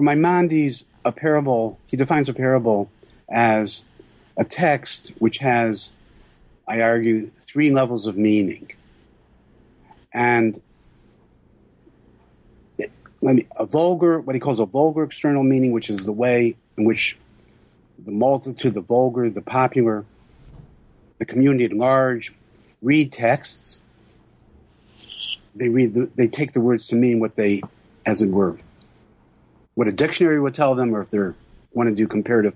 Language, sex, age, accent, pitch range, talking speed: English, male, 60-79, American, 105-140 Hz, 135 wpm